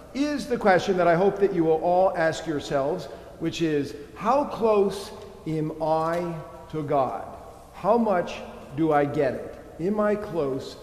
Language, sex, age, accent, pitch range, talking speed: English, male, 50-69, American, 145-200 Hz, 160 wpm